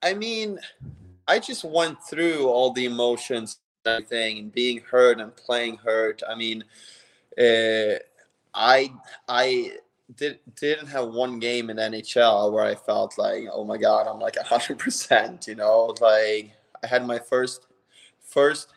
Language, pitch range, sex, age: English, 105-120 Hz, male, 20-39